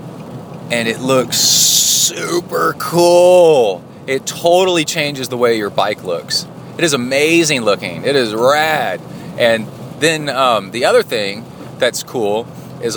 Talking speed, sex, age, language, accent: 135 wpm, male, 30-49, English, American